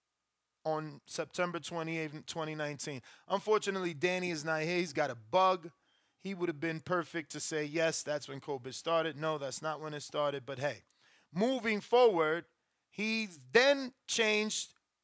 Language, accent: English, American